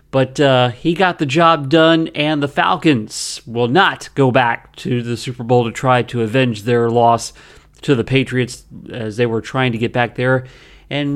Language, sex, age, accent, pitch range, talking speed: English, male, 40-59, American, 125-170 Hz, 195 wpm